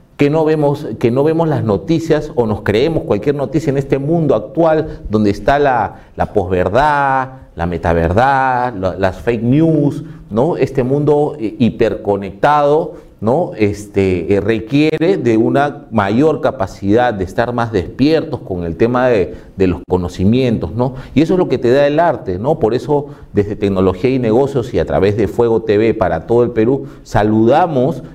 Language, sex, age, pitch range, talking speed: Spanish, male, 40-59, 105-140 Hz, 170 wpm